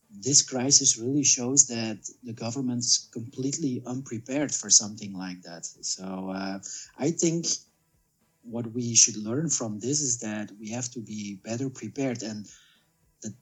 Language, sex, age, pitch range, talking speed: Romanian, male, 30-49, 105-135 Hz, 150 wpm